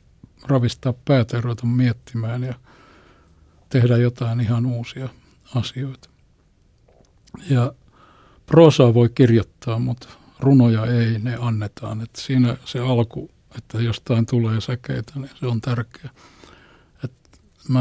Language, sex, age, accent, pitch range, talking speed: Finnish, male, 60-79, native, 115-130 Hz, 105 wpm